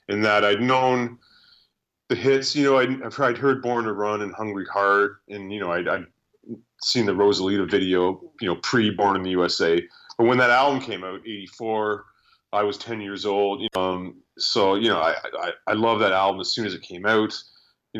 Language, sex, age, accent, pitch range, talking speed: English, male, 30-49, American, 95-115 Hz, 210 wpm